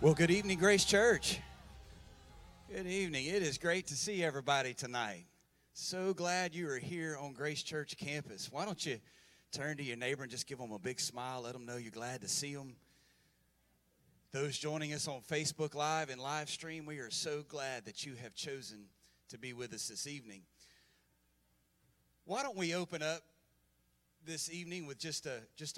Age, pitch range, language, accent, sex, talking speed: 30-49, 125-165 Hz, English, American, male, 185 wpm